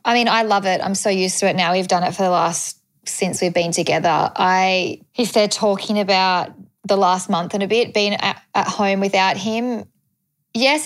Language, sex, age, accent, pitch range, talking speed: English, female, 20-39, Australian, 165-190 Hz, 215 wpm